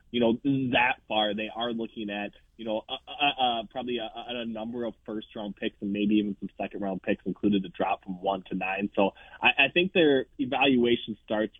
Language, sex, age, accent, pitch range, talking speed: English, male, 20-39, American, 100-120 Hz, 215 wpm